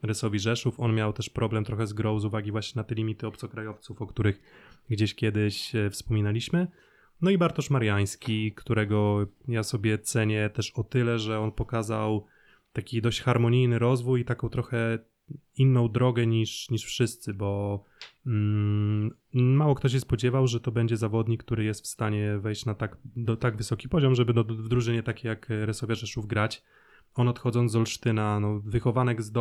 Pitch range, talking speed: 105-125 Hz, 160 wpm